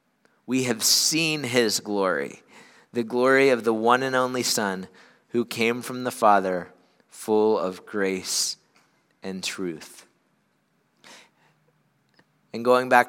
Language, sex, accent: English, male, American